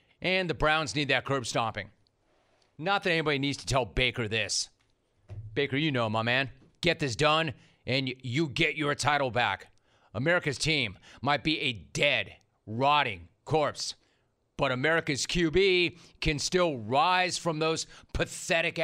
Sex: male